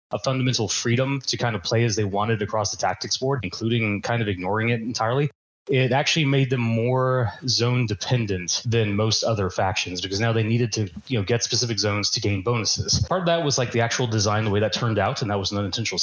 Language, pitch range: English, 105-130 Hz